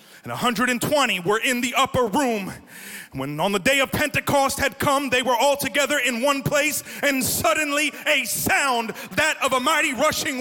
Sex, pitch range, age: male, 250-310 Hz, 30-49